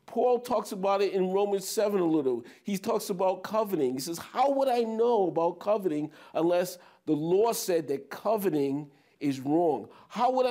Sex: male